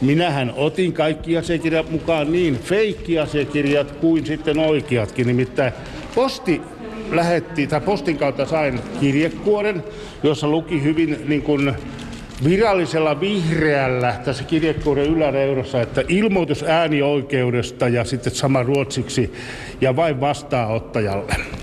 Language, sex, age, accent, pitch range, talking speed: Finnish, male, 60-79, native, 125-165 Hz, 105 wpm